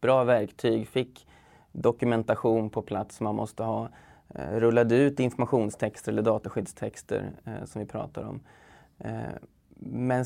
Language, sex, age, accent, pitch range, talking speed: Swedish, male, 20-39, native, 110-125 Hz, 115 wpm